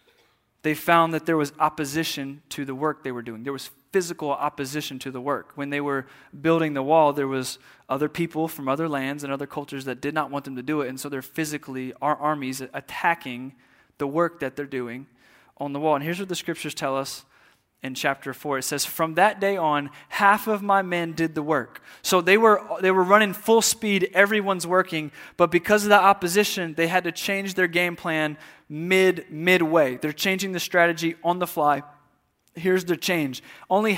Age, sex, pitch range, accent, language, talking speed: 20-39, male, 145-195 Hz, American, English, 205 wpm